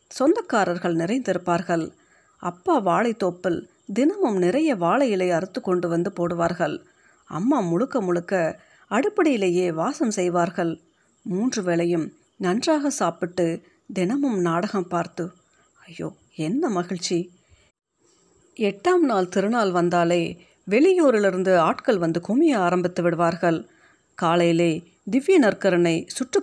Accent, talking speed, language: native, 95 wpm, Tamil